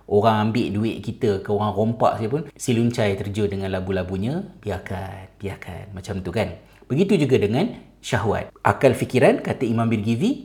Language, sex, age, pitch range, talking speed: Malay, male, 30-49, 100-130 Hz, 150 wpm